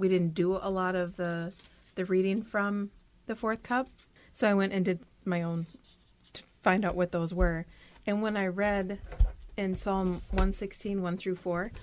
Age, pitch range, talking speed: 30-49, 170-200 Hz, 185 wpm